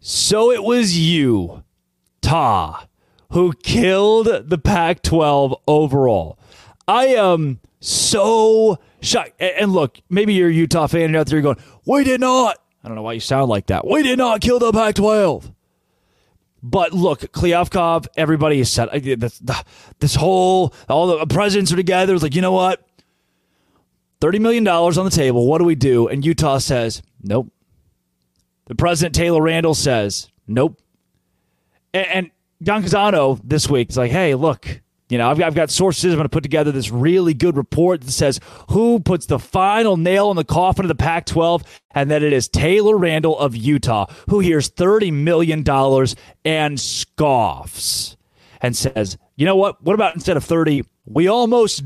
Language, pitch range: English, 130-185 Hz